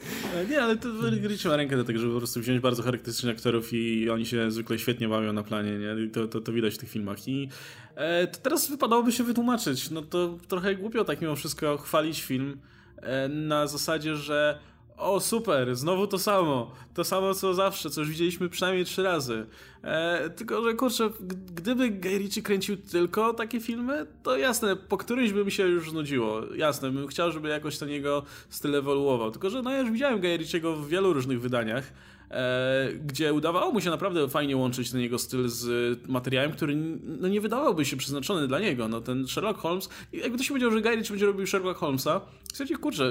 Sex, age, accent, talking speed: male, 20-39, native, 190 wpm